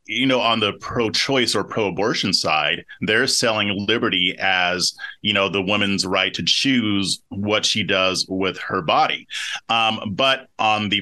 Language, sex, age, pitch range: English, male, 30-49, 100-125 Hz